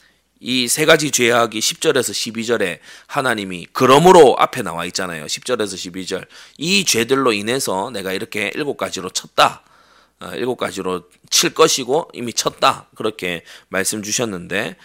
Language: Korean